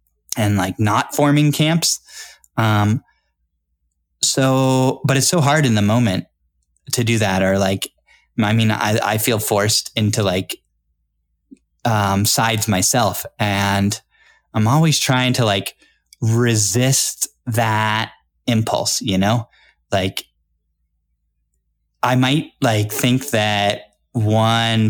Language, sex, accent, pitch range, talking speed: English, male, American, 100-125 Hz, 115 wpm